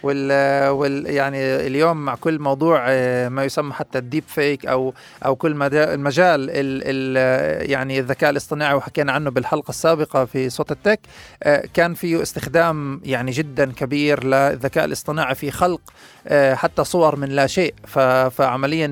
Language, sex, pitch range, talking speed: Arabic, male, 135-160 Hz, 145 wpm